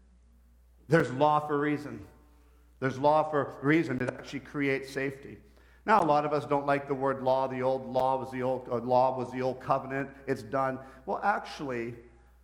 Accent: American